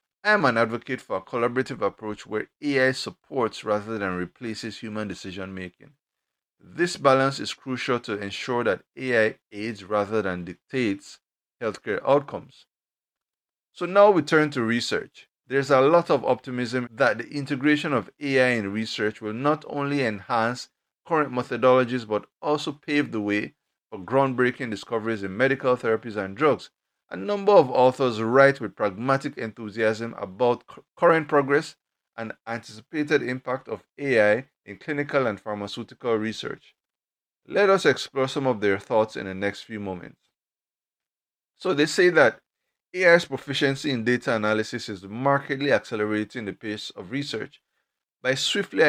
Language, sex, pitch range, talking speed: English, male, 110-140 Hz, 145 wpm